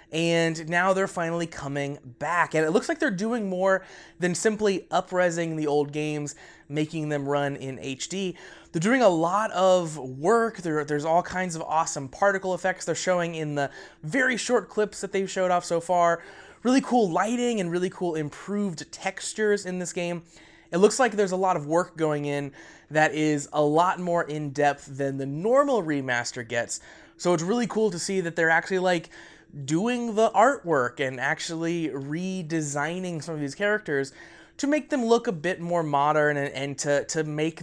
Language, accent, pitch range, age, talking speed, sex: English, American, 150-205 Hz, 20-39, 185 wpm, male